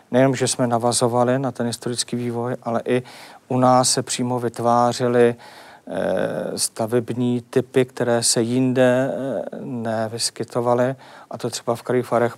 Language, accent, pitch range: Czech, native, 115-125 Hz